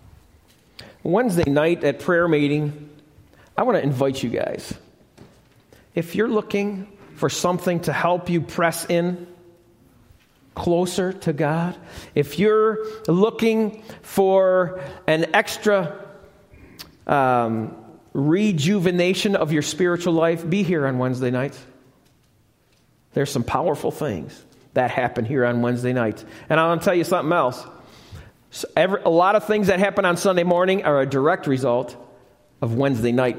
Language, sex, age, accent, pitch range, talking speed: English, male, 40-59, American, 135-200 Hz, 135 wpm